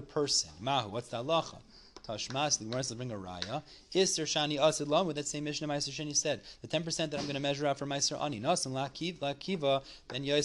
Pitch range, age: 120-160 Hz, 30-49